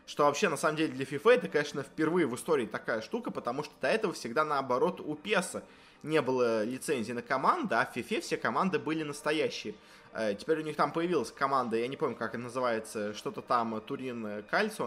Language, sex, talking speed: Russian, male, 200 wpm